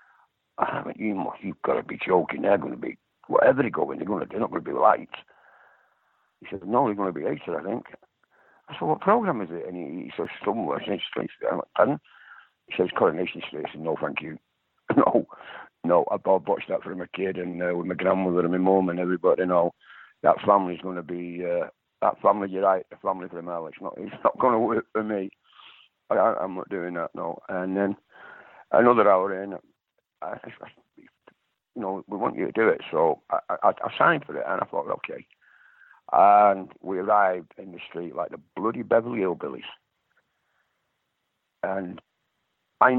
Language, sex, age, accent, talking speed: English, male, 60-79, British, 195 wpm